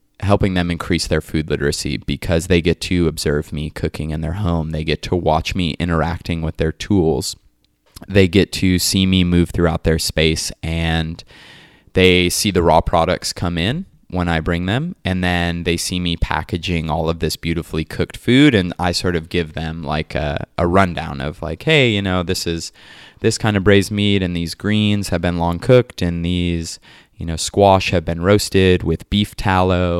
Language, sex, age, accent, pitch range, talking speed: English, male, 20-39, American, 85-100 Hz, 200 wpm